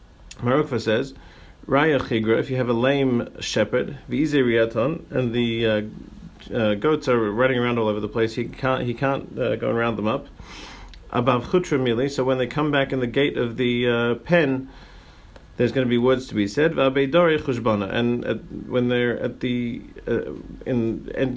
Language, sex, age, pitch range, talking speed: English, male, 40-59, 115-135 Hz, 170 wpm